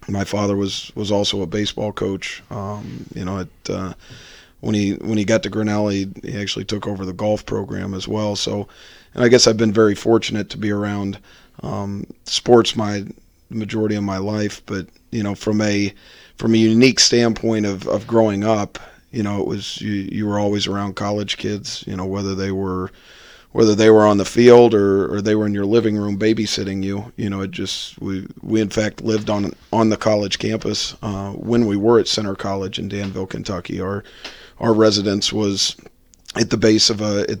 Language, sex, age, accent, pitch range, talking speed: English, male, 40-59, American, 100-110 Hz, 205 wpm